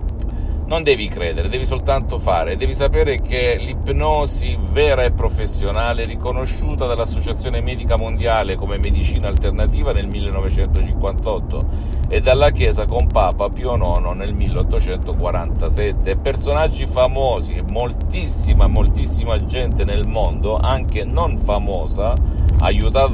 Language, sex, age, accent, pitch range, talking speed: Italian, male, 50-69, native, 75-95 Hz, 110 wpm